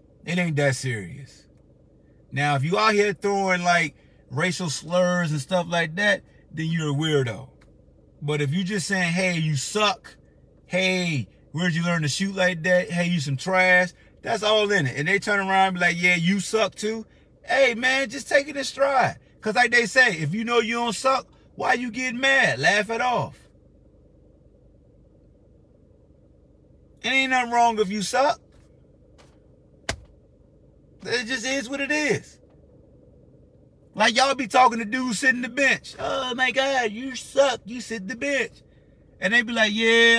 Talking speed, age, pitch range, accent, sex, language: 175 wpm, 30-49, 160-230 Hz, American, male, English